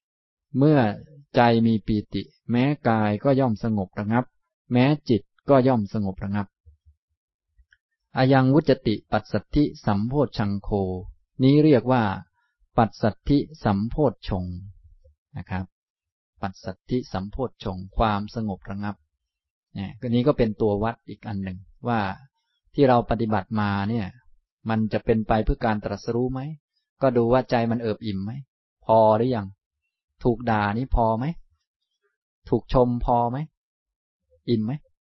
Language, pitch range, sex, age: Thai, 100-125 Hz, male, 20-39